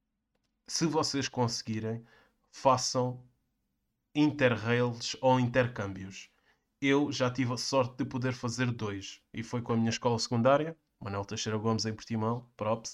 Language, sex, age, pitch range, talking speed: Portuguese, male, 20-39, 120-135 Hz, 135 wpm